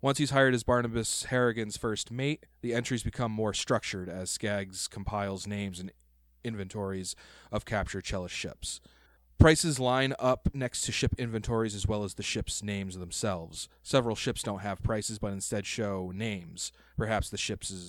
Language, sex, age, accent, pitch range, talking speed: English, male, 30-49, American, 95-120 Hz, 165 wpm